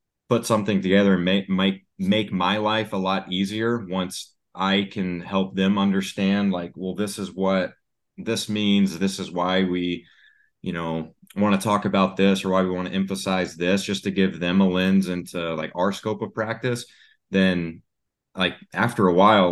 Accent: American